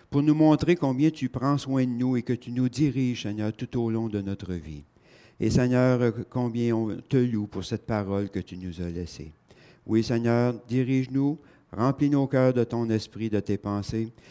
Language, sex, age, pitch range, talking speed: French, male, 60-79, 110-150 Hz, 195 wpm